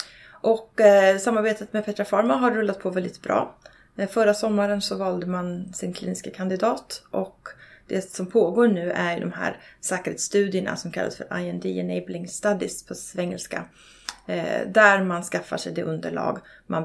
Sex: female